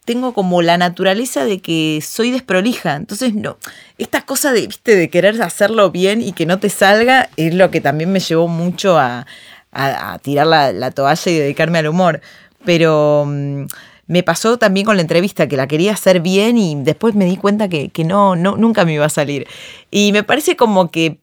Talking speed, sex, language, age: 205 wpm, female, Spanish, 20-39